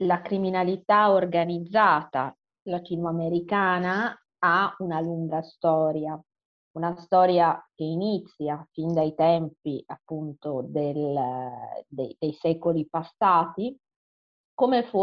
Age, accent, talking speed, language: 30-49, native, 75 wpm, Italian